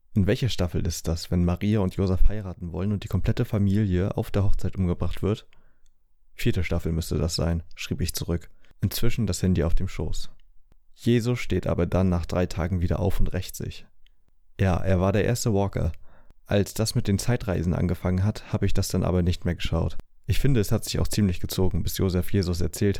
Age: 30-49